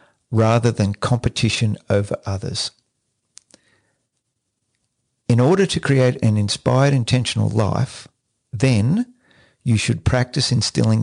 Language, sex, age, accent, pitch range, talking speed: English, male, 50-69, Australian, 110-130 Hz, 100 wpm